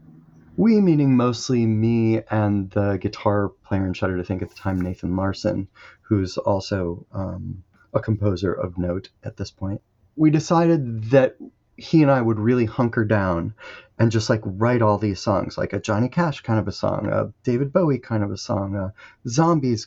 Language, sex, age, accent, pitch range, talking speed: English, male, 30-49, American, 100-125 Hz, 185 wpm